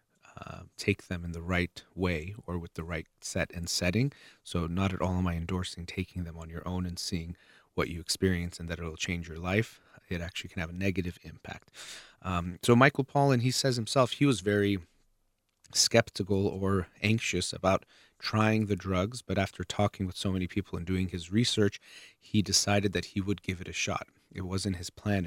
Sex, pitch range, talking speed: male, 90-105 Hz, 205 wpm